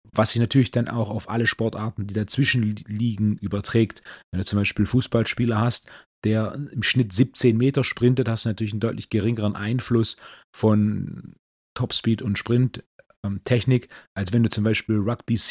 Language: German